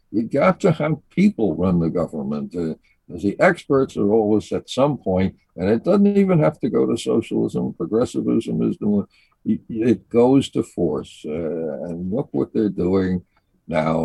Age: 60-79